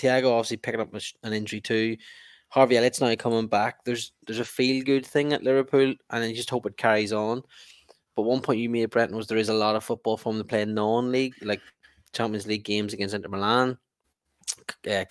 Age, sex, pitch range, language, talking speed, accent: 10-29, male, 105-125 Hz, English, 210 wpm, Irish